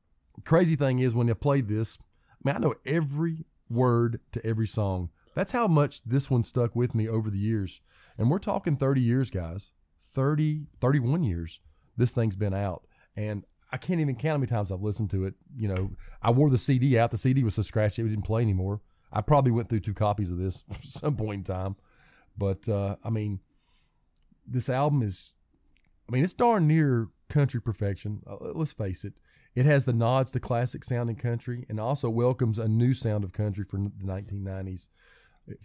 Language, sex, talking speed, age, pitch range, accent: English, male, 200 wpm, 30-49, 100-130 Hz, American